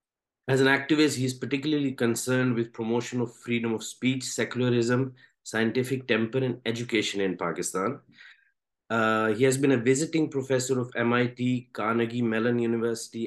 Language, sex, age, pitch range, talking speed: English, male, 50-69, 110-130 Hz, 145 wpm